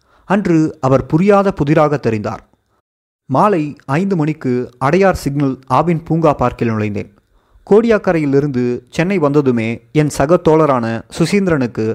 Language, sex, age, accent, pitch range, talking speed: Tamil, male, 30-49, native, 120-160 Hz, 105 wpm